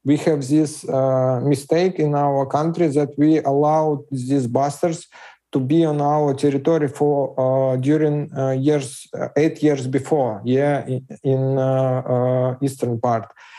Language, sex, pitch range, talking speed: English, male, 135-165 Hz, 145 wpm